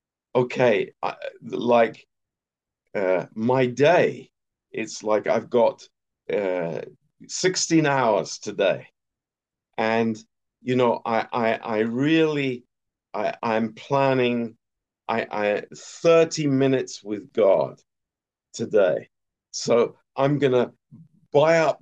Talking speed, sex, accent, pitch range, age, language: 100 wpm, male, British, 115-145 Hz, 50-69, Romanian